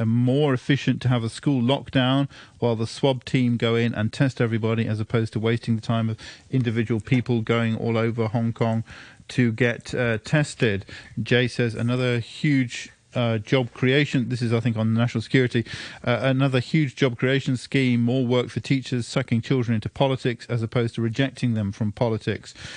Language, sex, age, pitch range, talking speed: English, male, 40-59, 115-135 Hz, 180 wpm